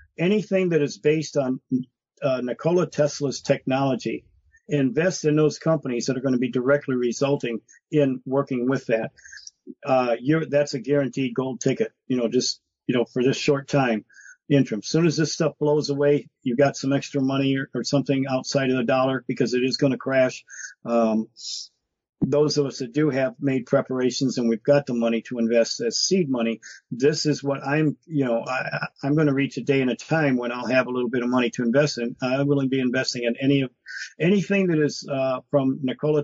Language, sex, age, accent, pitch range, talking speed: English, male, 50-69, American, 125-145 Hz, 205 wpm